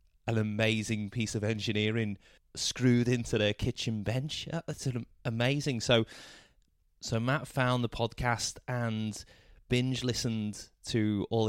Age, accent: 20-39, British